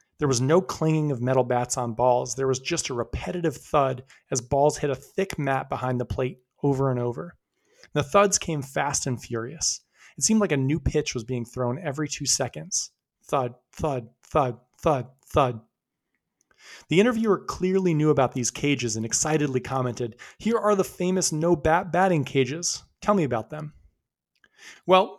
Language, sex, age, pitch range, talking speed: English, male, 30-49, 130-170 Hz, 170 wpm